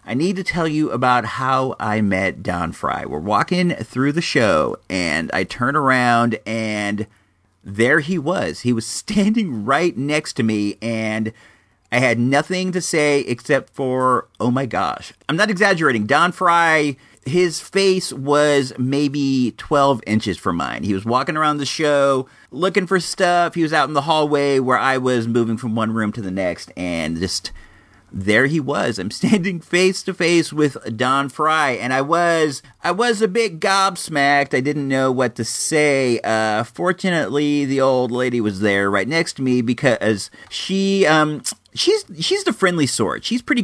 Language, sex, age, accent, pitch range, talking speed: English, male, 40-59, American, 115-165 Hz, 175 wpm